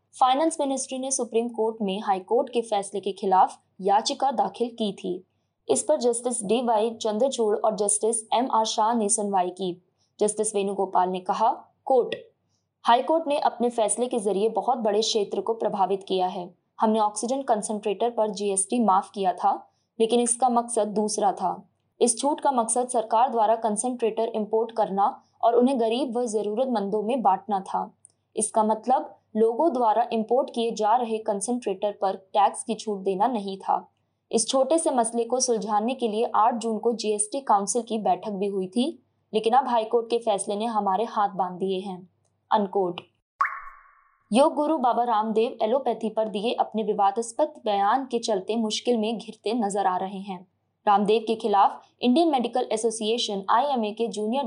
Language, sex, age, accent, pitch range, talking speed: Hindi, female, 20-39, native, 200-240 Hz, 165 wpm